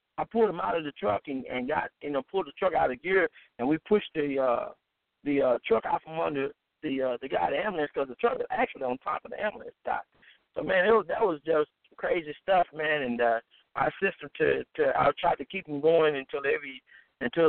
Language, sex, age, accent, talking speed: English, male, 50-69, American, 245 wpm